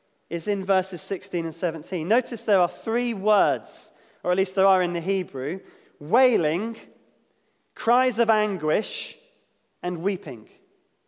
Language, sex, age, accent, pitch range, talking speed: English, male, 20-39, British, 190-245 Hz, 135 wpm